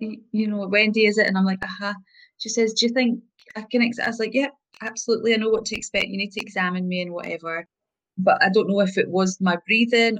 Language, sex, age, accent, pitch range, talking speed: English, female, 20-39, British, 185-235 Hz, 265 wpm